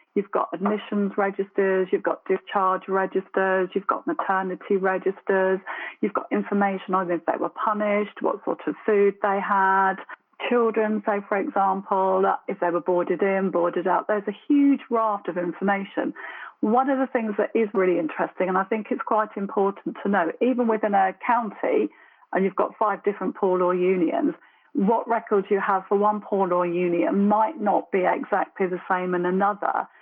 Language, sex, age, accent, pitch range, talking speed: English, female, 40-59, British, 185-220 Hz, 175 wpm